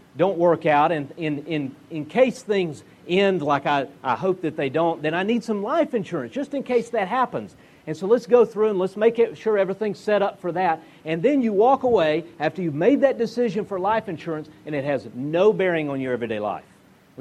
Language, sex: English, male